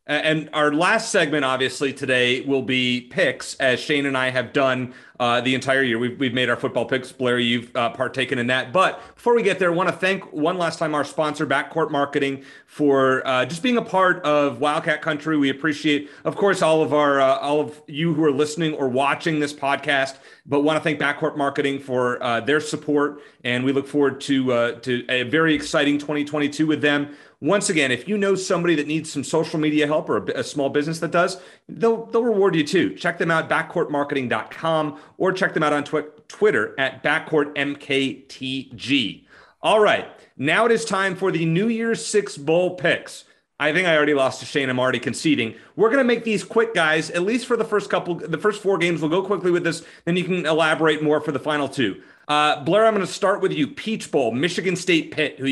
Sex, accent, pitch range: male, American, 135-175 Hz